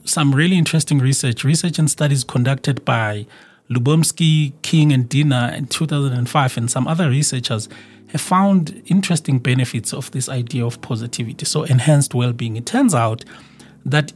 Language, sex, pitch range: English, male, 125-155 Hz